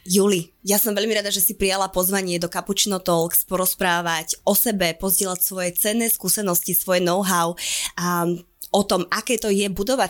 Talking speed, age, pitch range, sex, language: 165 wpm, 20-39, 175-205 Hz, female, Slovak